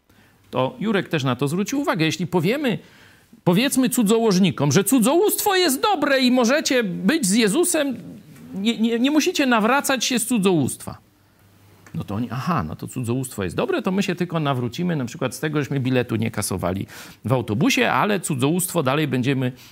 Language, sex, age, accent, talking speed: Polish, male, 50-69, native, 170 wpm